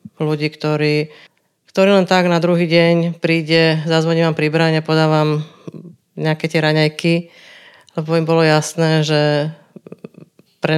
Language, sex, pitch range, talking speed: Slovak, female, 155-170 Hz, 120 wpm